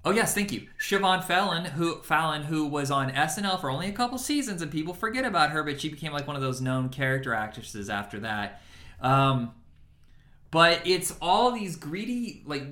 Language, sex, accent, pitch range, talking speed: English, male, American, 130-180 Hz, 195 wpm